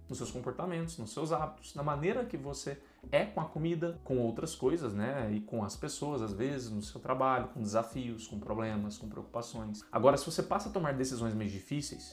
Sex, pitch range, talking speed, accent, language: male, 115-165 Hz, 210 wpm, Brazilian, Portuguese